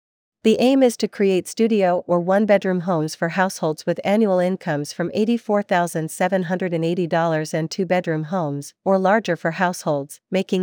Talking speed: 135 wpm